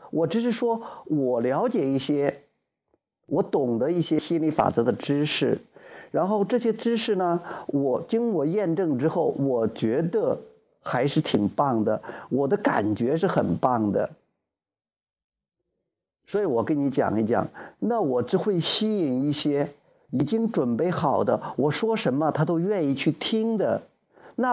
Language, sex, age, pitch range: Chinese, male, 50-69, 135-215 Hz